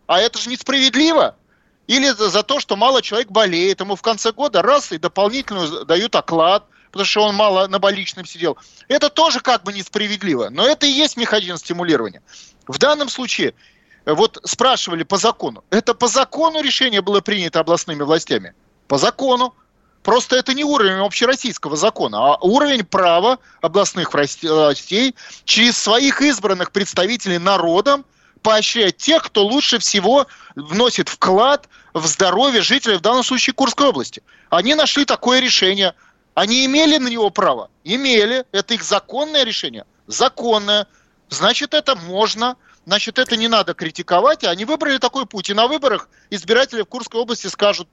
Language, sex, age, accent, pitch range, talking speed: Russian, male, 30-49, native, 190-260 Hz, 155 wpm